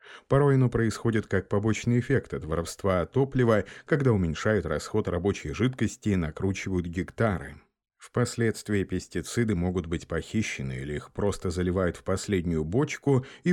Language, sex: Russian, male